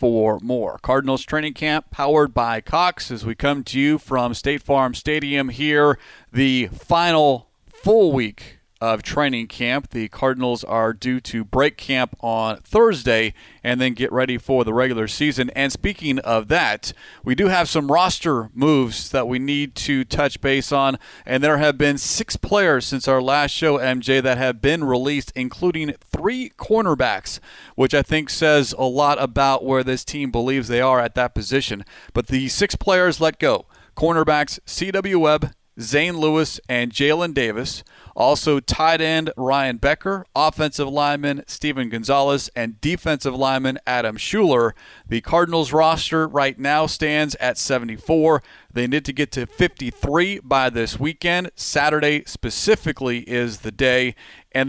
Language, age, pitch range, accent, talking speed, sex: English, 40-59, 125-150 Hz, American, 160 wpm, male